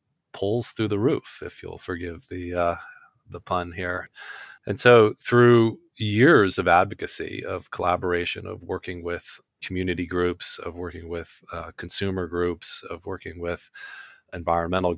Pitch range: 85-100 Hz